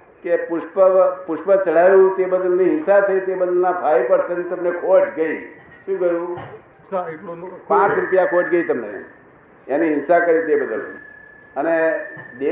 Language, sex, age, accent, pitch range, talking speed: Gujarati, male, 60-79, native, 175-205 Hz, 75 wpm